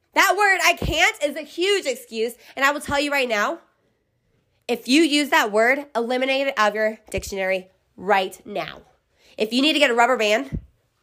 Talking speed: 195 wpm